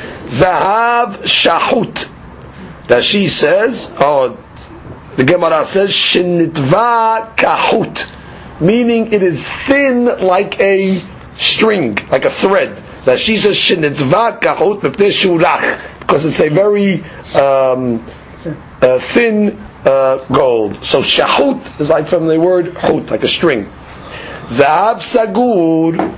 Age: 50-69